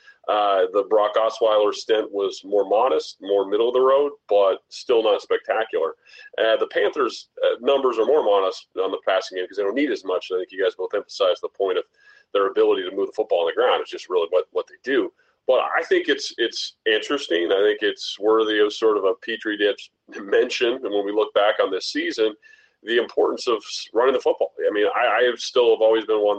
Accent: American